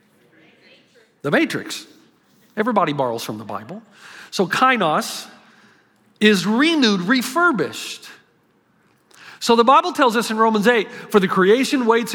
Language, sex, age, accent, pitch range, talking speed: English, male, 40-59, American, 205-295 Hz, 120 wpm